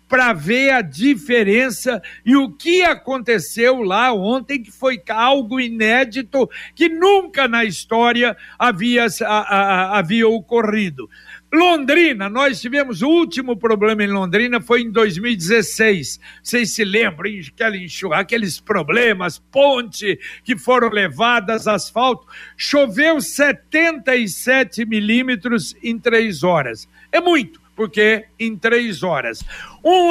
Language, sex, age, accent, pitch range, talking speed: Portuguese, male, 60-79, Brazilian, 210-260 Hz, 110 wpm